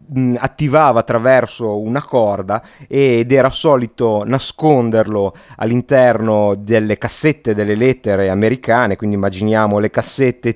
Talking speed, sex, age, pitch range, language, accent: 100 wpm, male, 30-49, 110-135 Hz, Italian, native